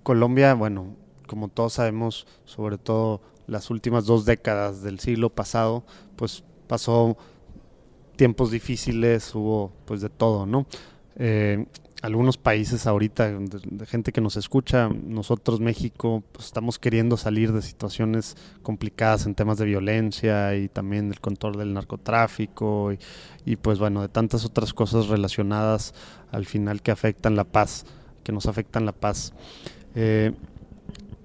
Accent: Mexican